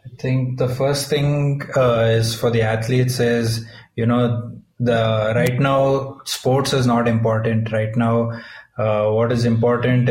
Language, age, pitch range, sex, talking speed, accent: English, 20-39, 115-120 Hz, male, 155 wpm, Indian